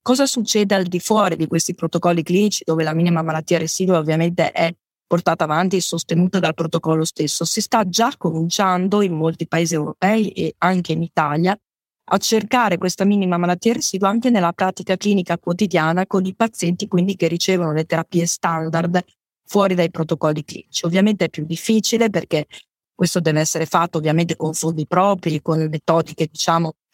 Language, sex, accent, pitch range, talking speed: Italian, female, native, 165-195 Hz, 165 wpm